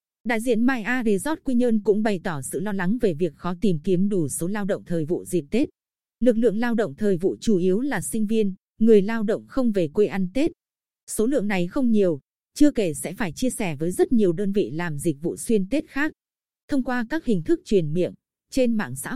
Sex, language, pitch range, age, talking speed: female, Vietnamese, 185-240 Hz, 20-39, 240 wpm